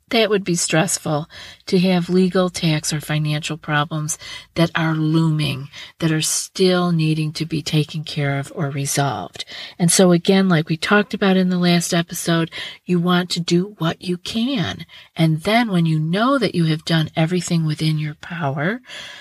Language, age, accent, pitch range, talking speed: English, 50-69, American, 155-180 Hz, 175 wpm